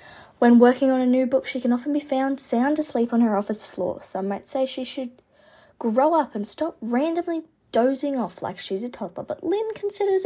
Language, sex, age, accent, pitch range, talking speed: English, female, 20-39, Australian, 200-275 Hz, 210 wpm